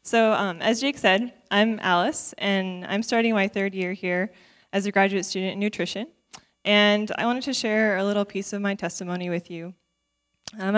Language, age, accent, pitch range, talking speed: English, 10-29, American, 185-220 Hz, 190 wpm